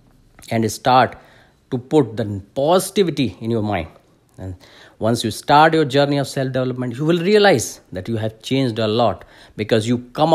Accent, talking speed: Indian, 170 wpm